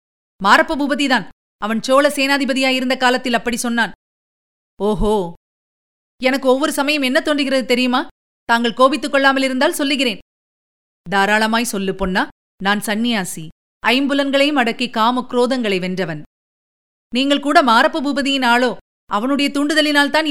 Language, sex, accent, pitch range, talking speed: Tamil, female, native, 210-275 Hz, 100 wpm